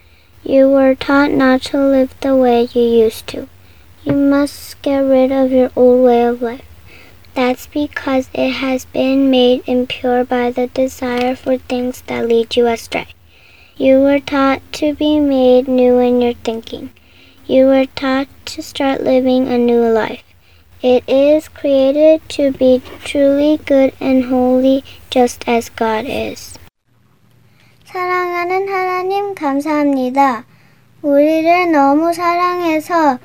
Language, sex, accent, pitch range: Korean, male, American, 250-310 Hz